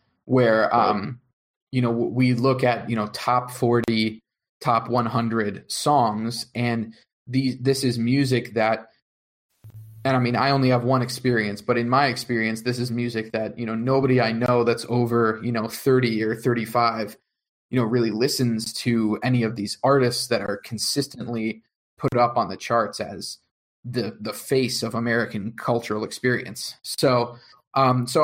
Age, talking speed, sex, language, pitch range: 20-39, 160 wpm, male, English, 115-130 Hz